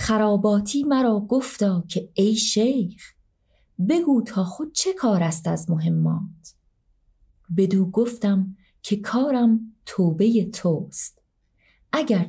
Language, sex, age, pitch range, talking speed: Persian, female, 30-49, 175-220 Hz, 105 wpm